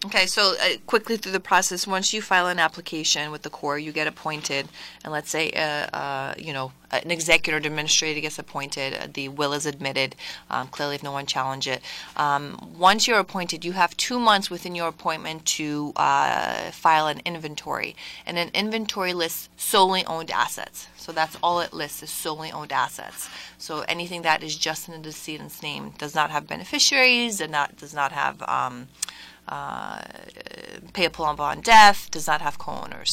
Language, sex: English, female